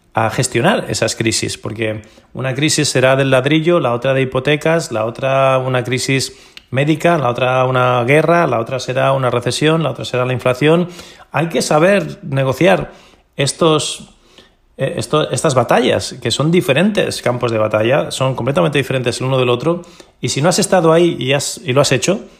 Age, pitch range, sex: 30-49, 115-160 Hz, male